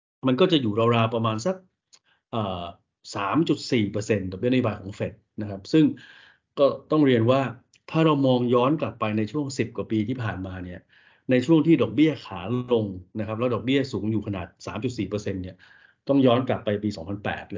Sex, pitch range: male, 105-125 Hz